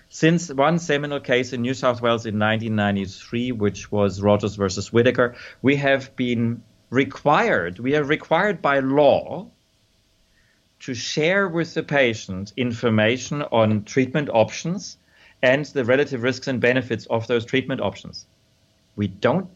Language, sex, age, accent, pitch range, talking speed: English, male, 40-59, German, 110-145 Hz, 140 wpm